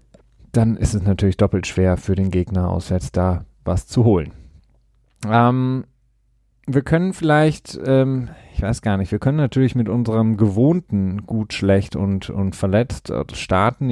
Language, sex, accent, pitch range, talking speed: German, male, German, 105-130 Hz, 155 wpm